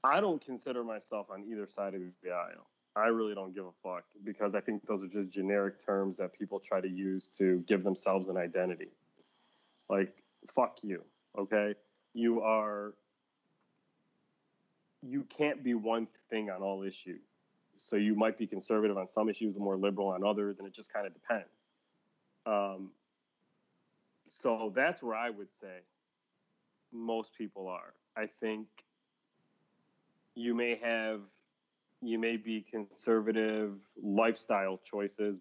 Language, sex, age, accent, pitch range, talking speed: English, male, 30-49, American, 100-115 Hz, 150 wpm